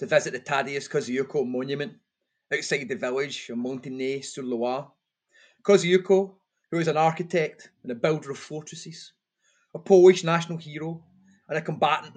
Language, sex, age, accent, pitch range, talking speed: English, male, 30-49, British, 145-175 Hz, 140 wpm